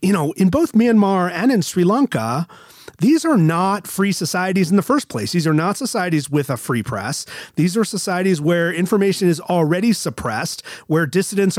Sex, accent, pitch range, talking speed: male, American, 145-195 Hz, 185 wpm